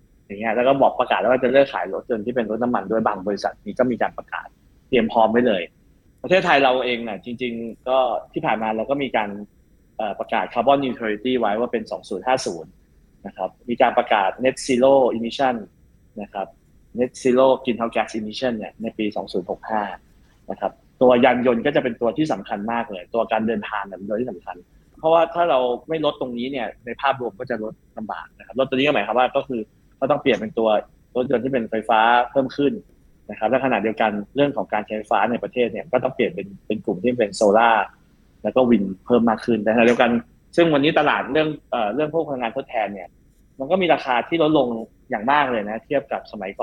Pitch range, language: 110-135 Hz, Thai